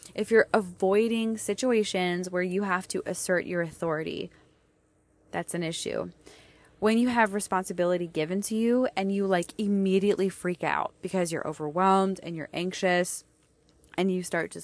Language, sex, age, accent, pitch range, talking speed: English, female, 20-39, American, 170-195 Hz, 150 wpm